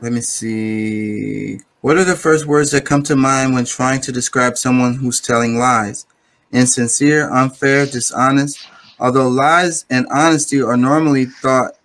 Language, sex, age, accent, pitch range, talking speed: English, male, 30-49, American, 120-140 Hz, 150 wpm